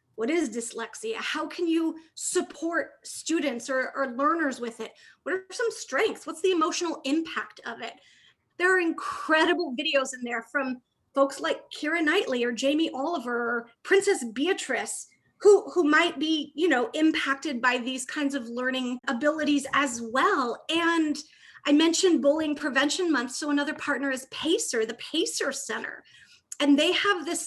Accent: American